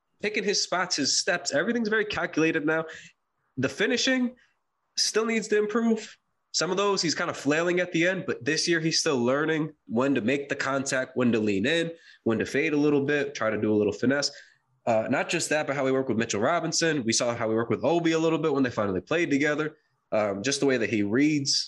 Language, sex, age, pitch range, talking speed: English, male, 20-39, 115-155 Hz, 235 wpm